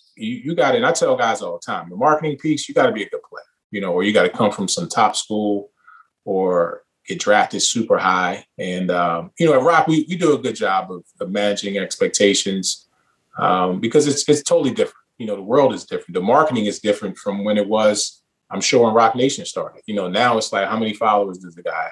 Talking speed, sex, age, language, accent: 245 wpm, male, 20-39, English, American